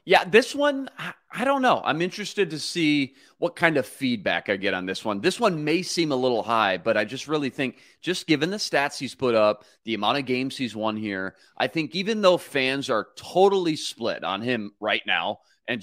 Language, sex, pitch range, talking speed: English, male, 115-160 Hz, 220 wpm